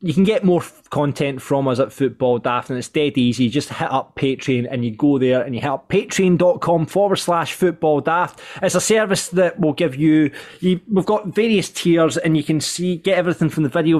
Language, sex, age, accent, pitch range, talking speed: English, male, 20-39, British, 145-180 Hz, 225 wpm